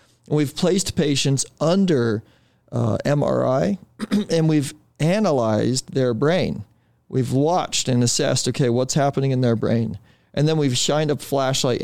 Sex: male